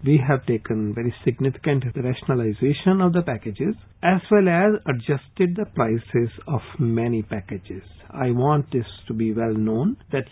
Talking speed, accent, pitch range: 150 wpm, Indian, 115-150 Hz